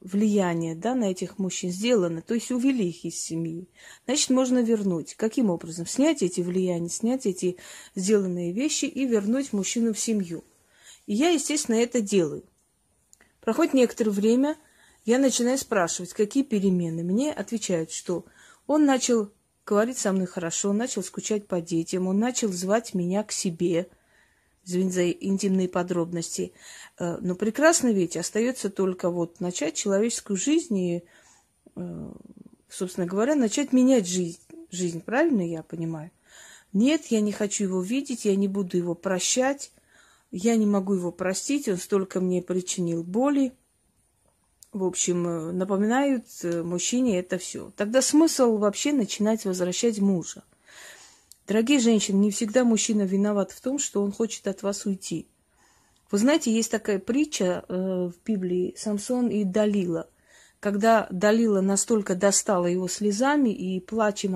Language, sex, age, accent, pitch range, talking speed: Russian, female, 30-49, native, 185-230 Hz, 140 wpm